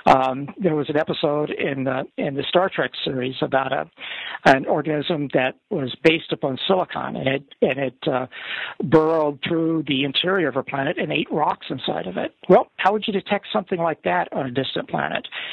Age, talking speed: 60-79, 185 wpm